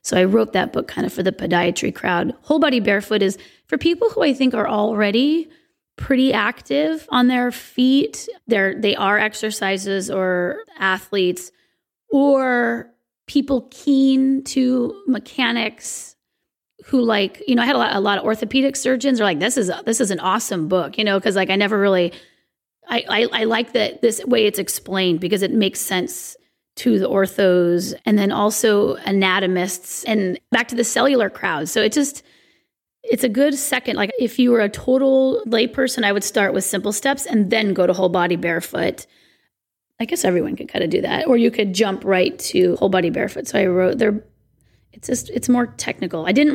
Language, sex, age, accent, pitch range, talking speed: English, female, 30-49, American, 195-260 Hz, 185 wpm